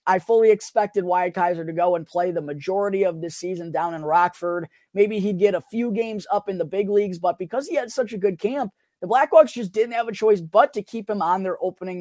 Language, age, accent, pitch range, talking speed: English, 20-39, American, 170-215 Hz, 250 wpm